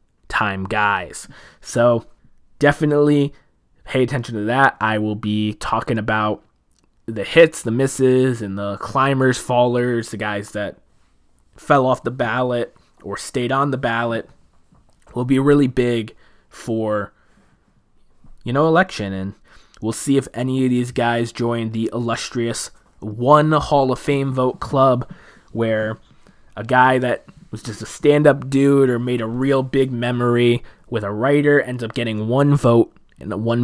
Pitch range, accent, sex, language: 110-135 Hz, American, male, English